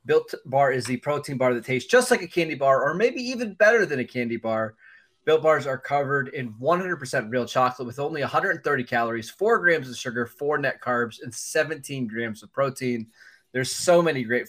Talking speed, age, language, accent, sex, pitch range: 205 wpm, 20-39, English, American, male, 125-160 Hz